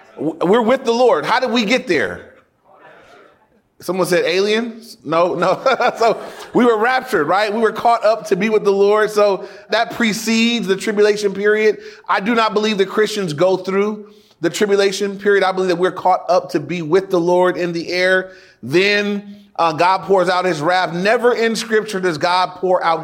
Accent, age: American, 30-49